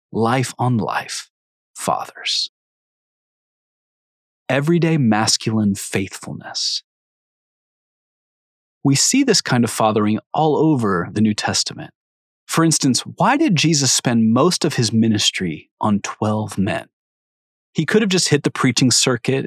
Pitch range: 110-145 Hz